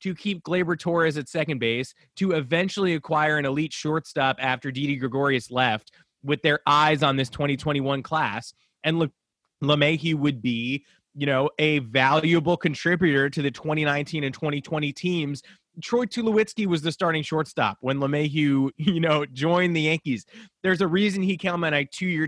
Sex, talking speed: male, 165 wpm